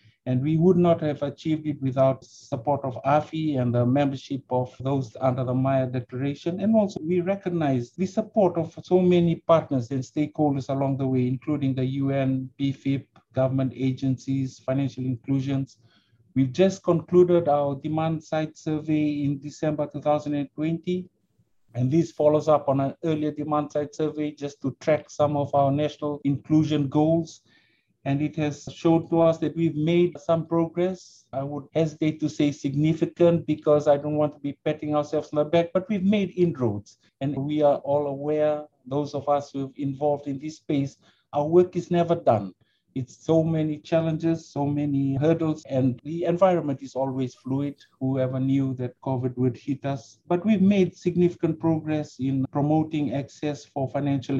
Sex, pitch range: male, 135-155 Hz